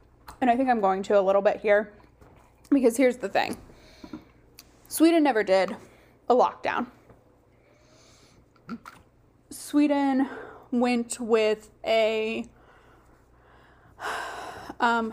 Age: 10-29